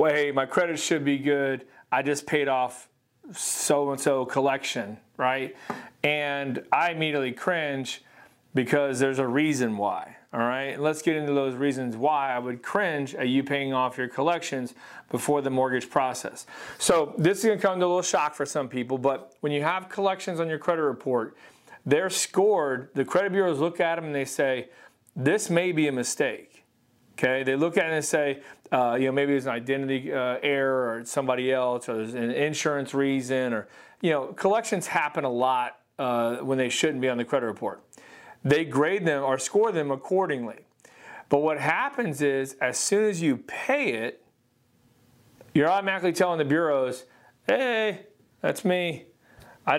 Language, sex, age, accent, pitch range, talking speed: English, male, 40-59, American, 130-160 Hz, 180 wpm